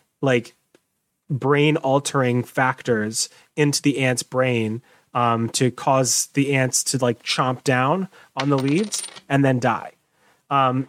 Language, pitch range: English, 125-150 Hz